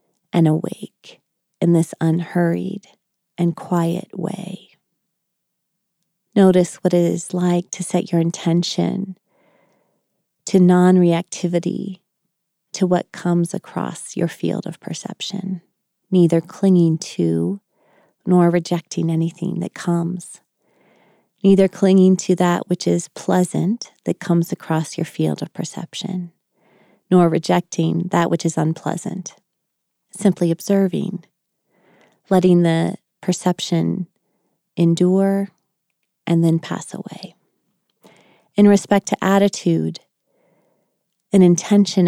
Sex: female